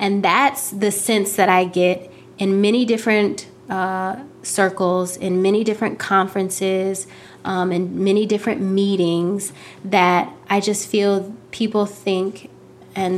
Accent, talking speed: American, 130 wpm